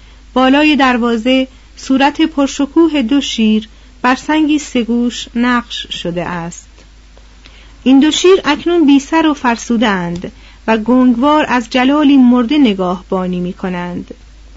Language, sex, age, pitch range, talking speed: Persian, female, 40-59, 220-275 Hz, 115 wpm